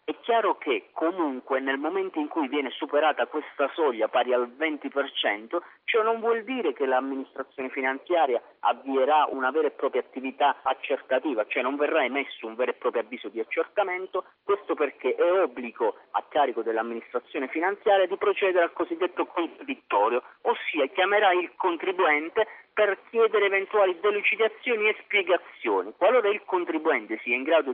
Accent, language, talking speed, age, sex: native, Italian, 150 wpm, 40-59, male